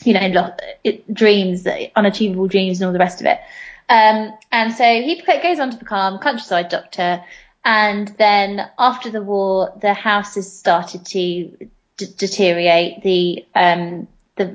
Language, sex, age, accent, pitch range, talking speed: English, female, 20-39, British, 180-210 Hz, 155 wpm